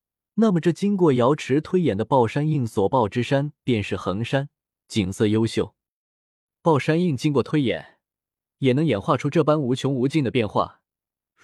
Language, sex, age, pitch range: Chinese, male, 20-39, 115-155 Hz